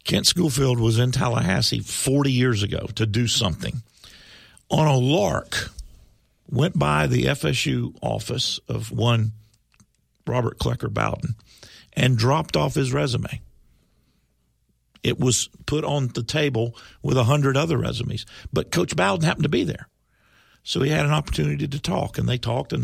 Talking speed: 150 wpm